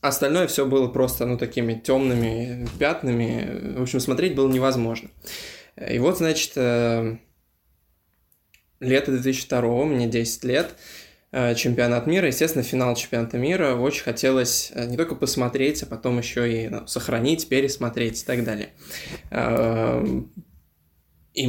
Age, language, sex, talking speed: 20-39, Russian, male, 120 wpm